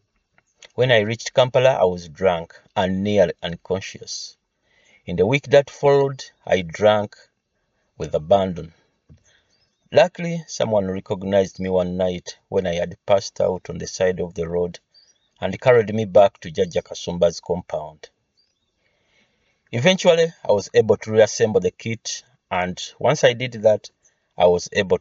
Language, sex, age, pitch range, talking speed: English, male, 50-69, 95-130 Hz, 140 wpm